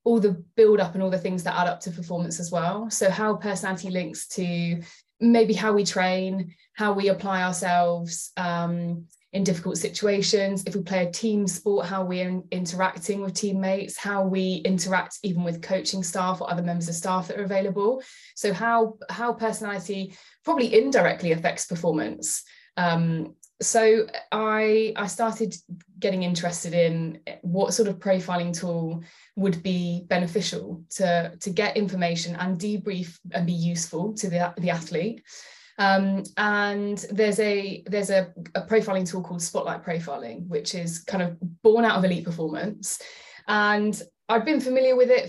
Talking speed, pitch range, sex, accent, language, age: 165 wpm, 175-210 Hz, female, British, English, 20-39